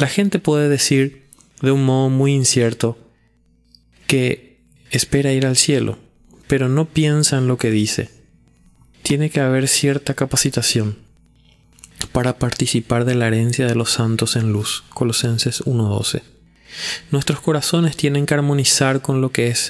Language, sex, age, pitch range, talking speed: Spanish, male, 20-39, 115-140 Hz, 145 wpm